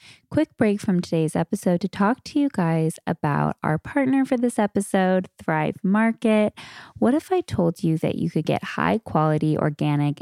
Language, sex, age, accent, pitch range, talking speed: English, female, 10-29, American, 155-205 Hz, 170 wpm